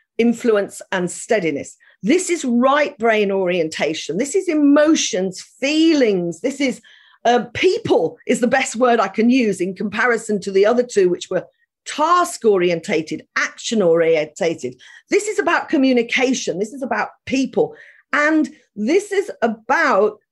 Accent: British